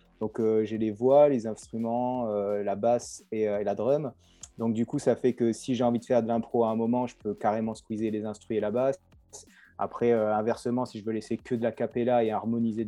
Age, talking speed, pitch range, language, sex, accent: 30-49, 245 wpm, 105-130 Hz, French, male, French